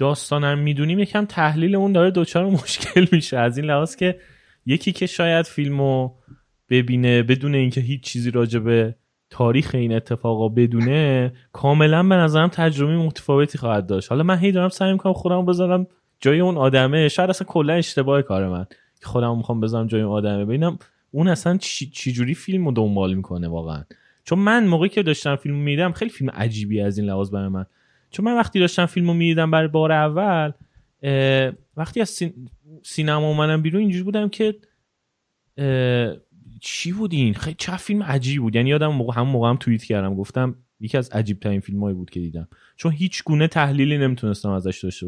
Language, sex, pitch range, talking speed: Persian, male, 115-165 Hz, 175 wpm